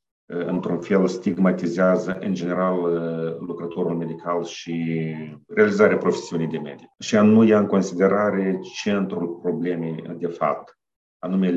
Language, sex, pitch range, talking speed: Romanian, male, 80-95 Hz, 115 wpm